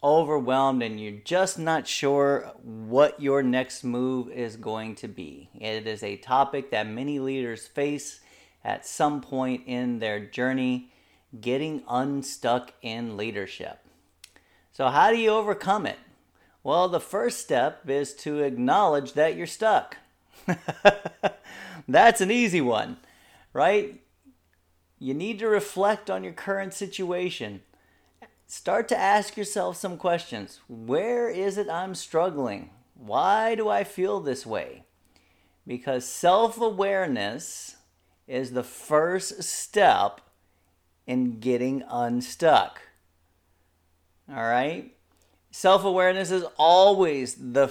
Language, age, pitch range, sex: English, 40-59, 115-185 Hz, male